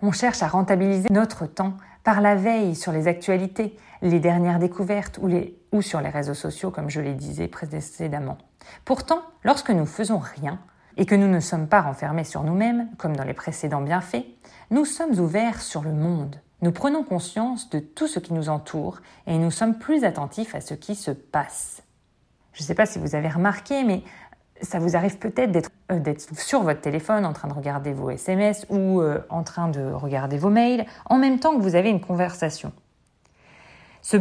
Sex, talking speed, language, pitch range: female, 195 wpm, French, 155-220 Hz